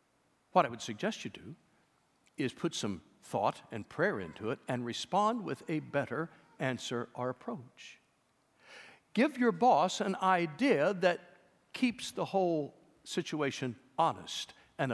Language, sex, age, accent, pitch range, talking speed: English, male, 60-79, American, 160-265 Hz, 135 wpm